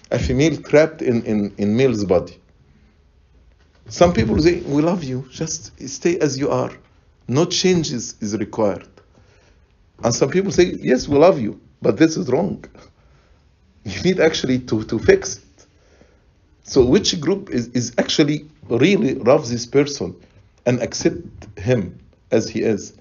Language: English